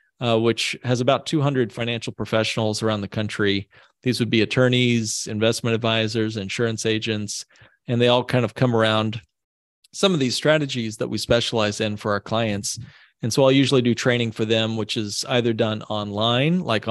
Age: 40-59